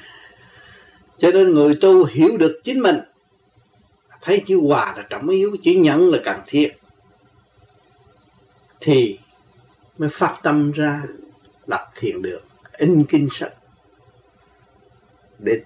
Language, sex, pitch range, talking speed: Vietnamese, male, 125-190 Hz, 120 wpm